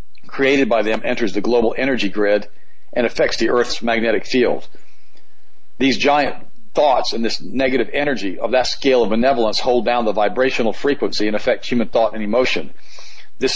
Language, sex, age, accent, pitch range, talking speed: English, male, 50-69, American, 110-135 Hz, 170 wpm